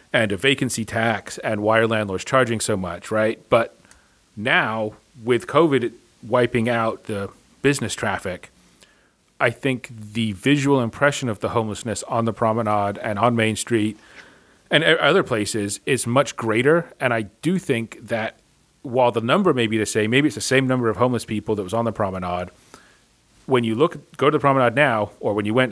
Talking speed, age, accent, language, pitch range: 185 wpm, 40-59, American, English, 105-125 Hz